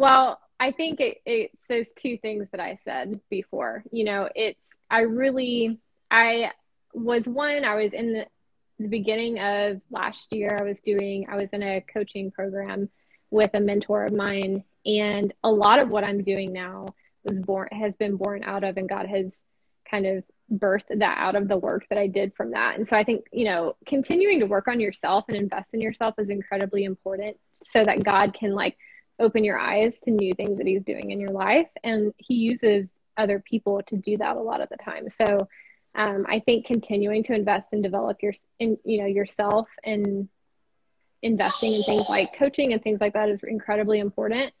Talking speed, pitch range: 200 wpm, 200-225 Hz